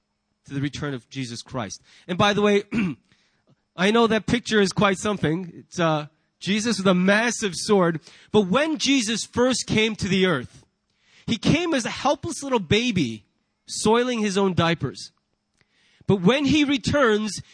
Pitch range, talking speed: 185-255 Hz, 160 wpm